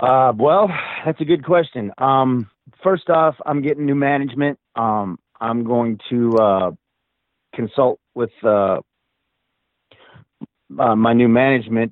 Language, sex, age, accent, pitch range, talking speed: English, male, 40-59, American, 105-135 Hz, 125 wpm